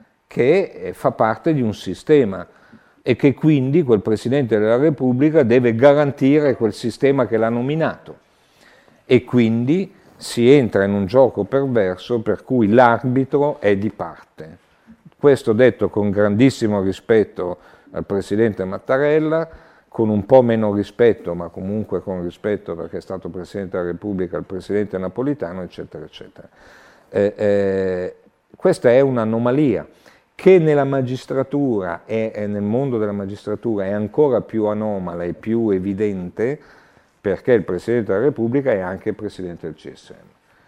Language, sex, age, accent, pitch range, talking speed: Italian, male, 50-69, native, 95-130 Hz, 135 wpm